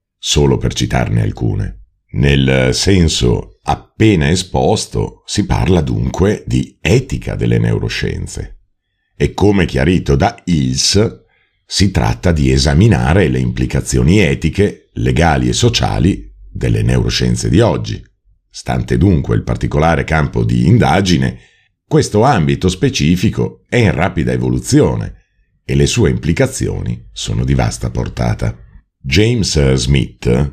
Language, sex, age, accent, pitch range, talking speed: Italian, male, 50-69, native, 65-95 Hz, 115 wpm